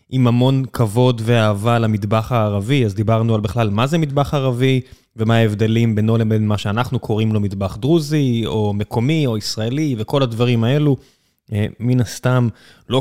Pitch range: 110-140 Hz